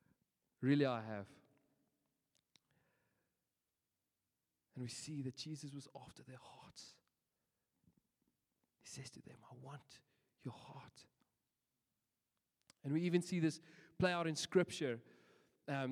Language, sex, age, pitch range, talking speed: English, male, 30-49, 125-155 Hz, 115 wpm